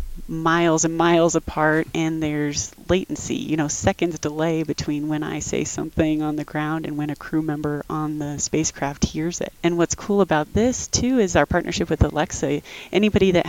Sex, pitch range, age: female, 150-175 Hz, 30-49